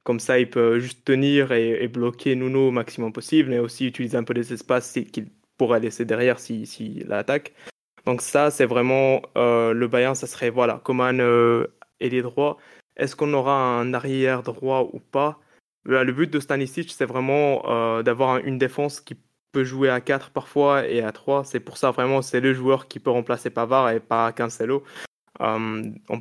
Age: 20-39